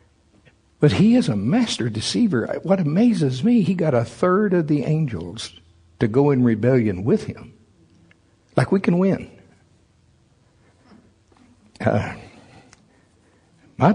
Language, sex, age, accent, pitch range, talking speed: English, male, 60-79, American, 110-140 Hz, 120 wpm